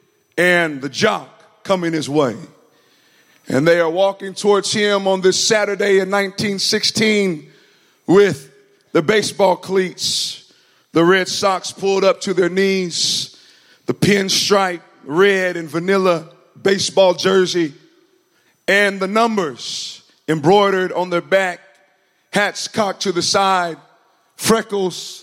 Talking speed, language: 115 wpm, English